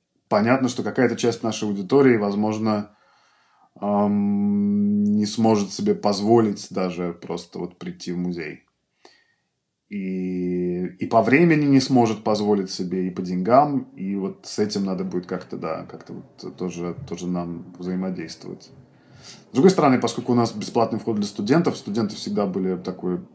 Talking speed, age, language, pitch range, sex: 145 wpm, 20-39, Russian, 95-130 Hz, male